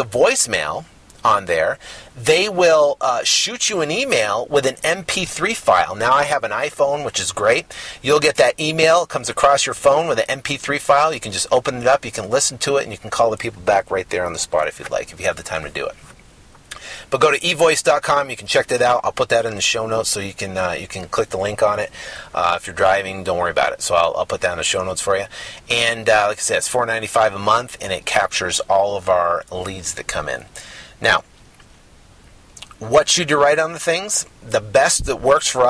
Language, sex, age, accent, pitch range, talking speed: English, male, 30-49, American, 115-160 Hz, 245 wpm